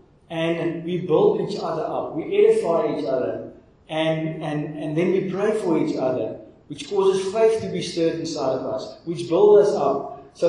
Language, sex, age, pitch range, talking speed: English, male, 60-79, 130-160 Hz, 190 wpm